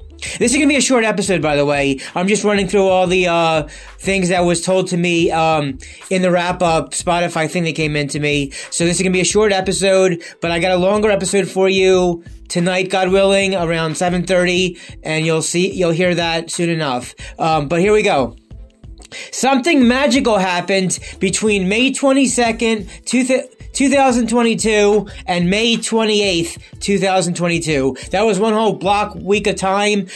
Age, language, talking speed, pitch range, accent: 30-49, English, 180 wpm, 175-225 Hz, American